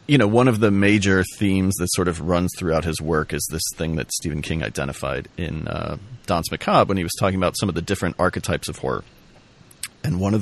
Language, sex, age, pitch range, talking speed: English, male, 40-59, 85-110 Hz, 230 wpm